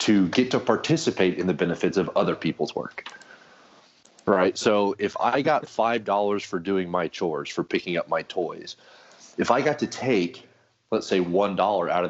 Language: English